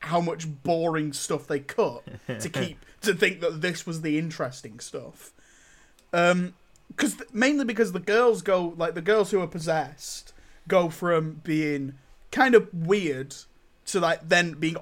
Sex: male